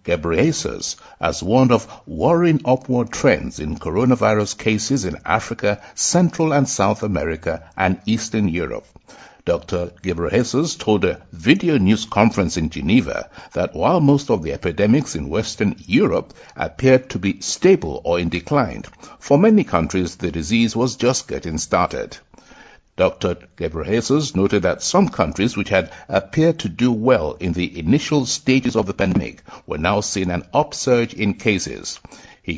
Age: 60-79